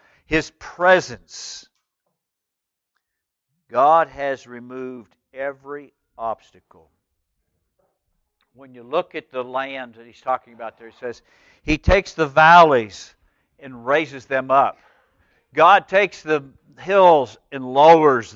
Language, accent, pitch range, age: English, American, 140-215 Hz, 60-79